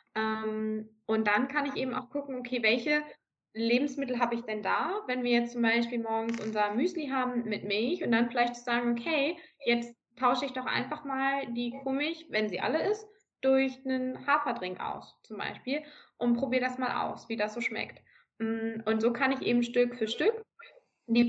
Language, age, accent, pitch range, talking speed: German, 20-39, German, 215-260 Hz, 185 wpm